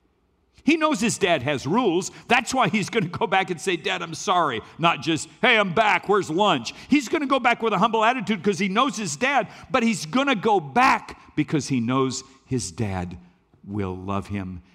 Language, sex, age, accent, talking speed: English, male, 50-69, American, 215 wpm